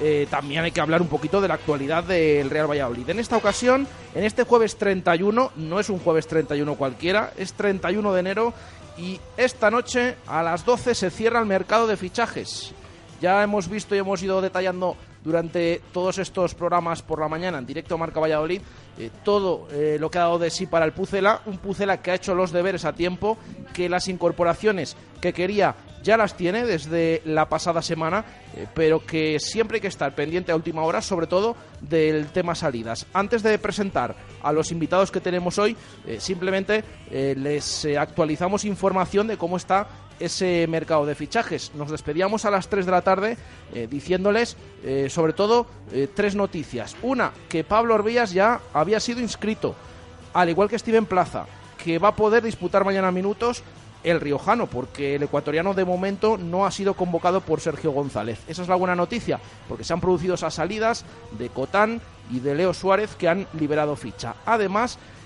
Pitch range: 155-205 Hz